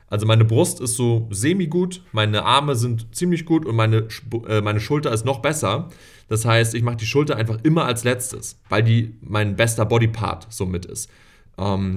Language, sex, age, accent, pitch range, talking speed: German, male, 30-49, German, 105-125 Hz, 185 wpm